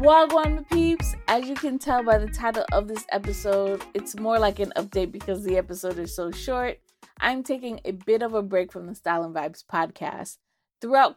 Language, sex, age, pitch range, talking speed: English, female, 20-39, 185-250 Hz, 200 wpm